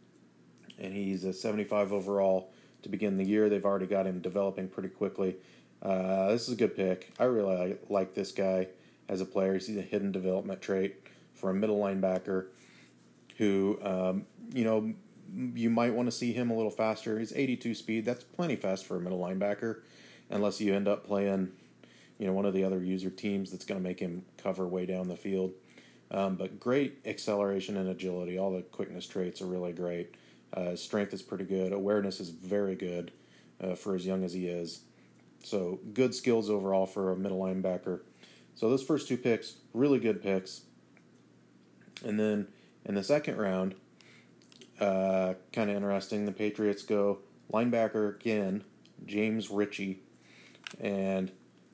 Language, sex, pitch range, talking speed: English, male, 95-105 Hz, 170 wpm